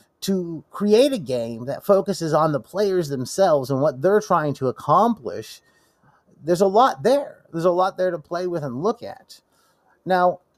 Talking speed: 175 wpm